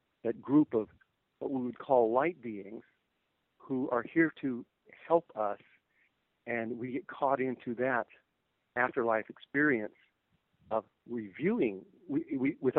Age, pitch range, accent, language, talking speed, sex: 50-69, 115-140 Hz, American, English, 130 wpm, male